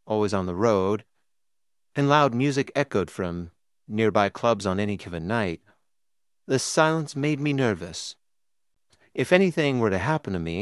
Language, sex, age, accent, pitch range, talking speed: English, male, 50-69, American, 95-140 Hz, 155 wpm